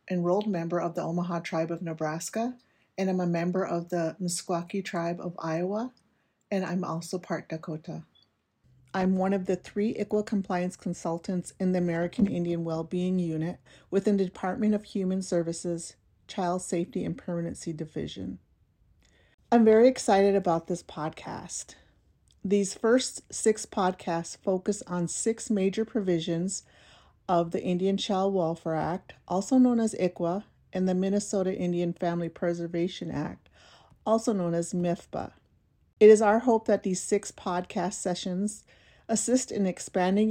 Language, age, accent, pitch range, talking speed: English, 40-59, American, 170-200 Hz, 145 wpm